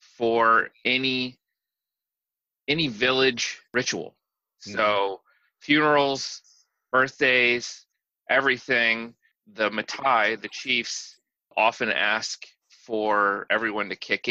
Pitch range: 100-120 Hz